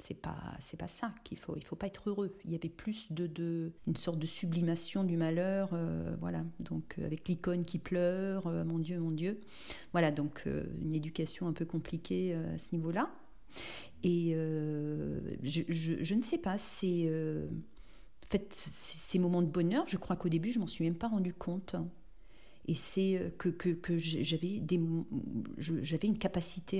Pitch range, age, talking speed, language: 155-185 Hz, 40-59, 200 wpm, French